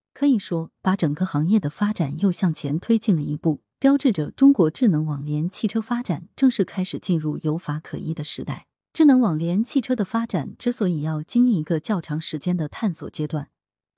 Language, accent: Chinese, native